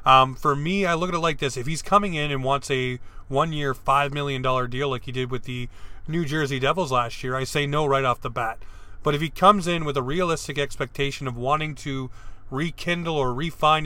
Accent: American